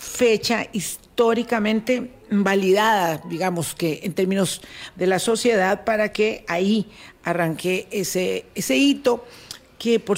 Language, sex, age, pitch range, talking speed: Spanish, female, 50-69, 165-210 Hz, 110 wpm